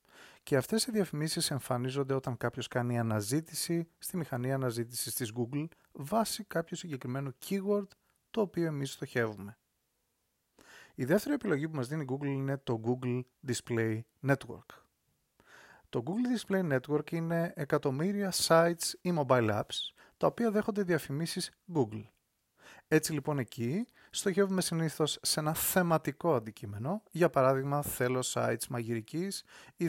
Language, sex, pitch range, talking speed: Greek, male, 125-175 Hz, 130 wpm